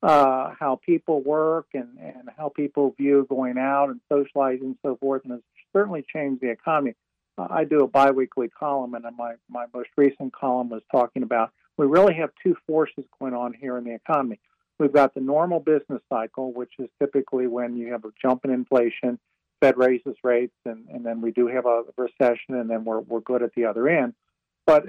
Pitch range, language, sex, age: 125-160 Hz, English, male, 50-69